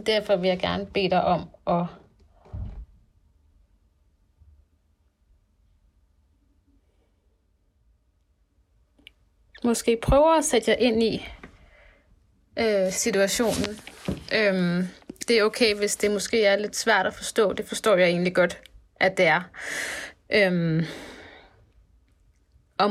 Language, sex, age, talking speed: Danish, female, 30-49, 100 wpm